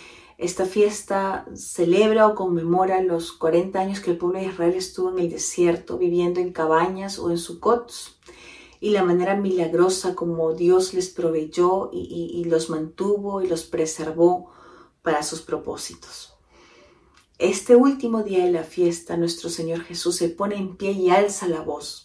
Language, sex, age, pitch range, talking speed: Spanish, female, 40-59, 170-200 Hz, 160 wpm